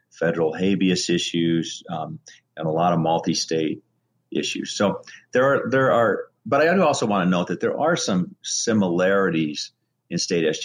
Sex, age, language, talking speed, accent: male, 40-59, English, 175 wpm, American